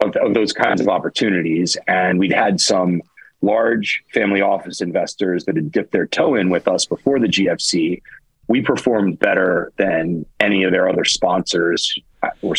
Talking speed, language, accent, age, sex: 160 wpm, English, American, 40-59, male